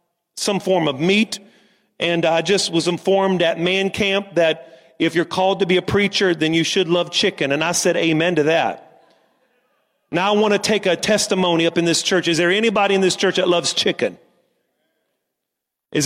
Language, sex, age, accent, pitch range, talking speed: English, male, 40-59, American, 180-235 Hz, 195 wpm